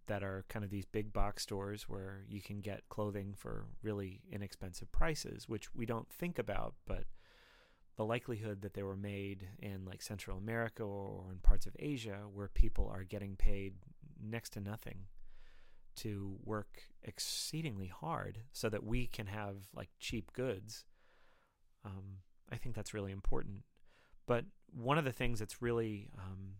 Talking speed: 160 wpm